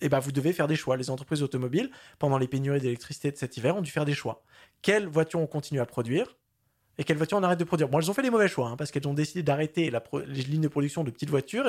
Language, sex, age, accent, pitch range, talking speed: French, male, 20-39, French, 130-175 Hz, 295 wpm